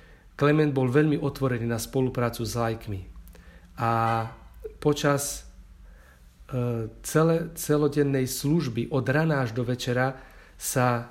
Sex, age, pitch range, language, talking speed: male, 40-59, 115-140 Hz, Slovak, 105 wpm